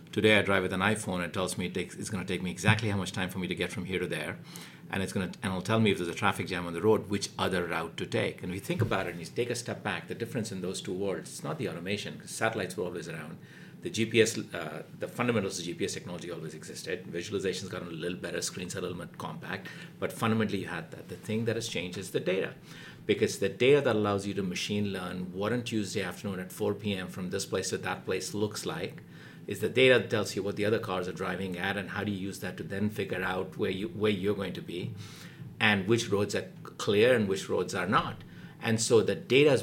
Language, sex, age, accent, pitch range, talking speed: English, male, 50-69, Indian, 95-110 Hz, 270 wpm